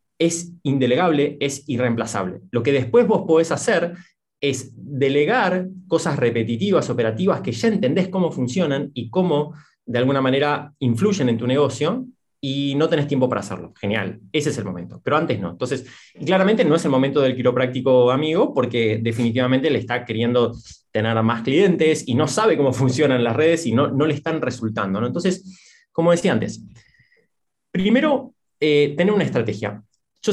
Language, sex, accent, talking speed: Spanish, male, Argentinian, 165 wpm